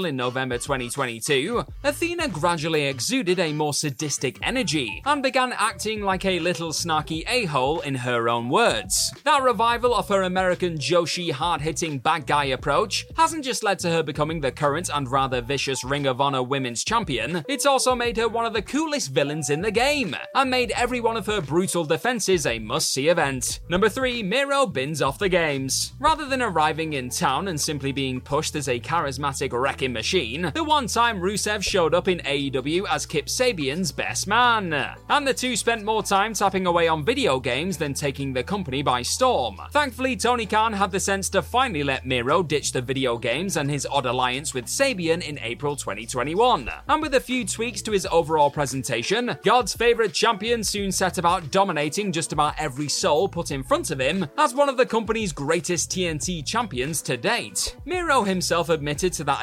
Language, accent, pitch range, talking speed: English, British, 140-225 Hz, 190 wpm